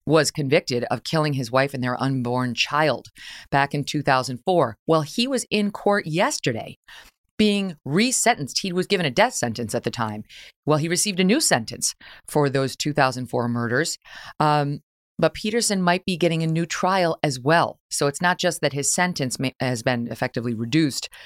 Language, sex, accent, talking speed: English, female, American, 175 wpm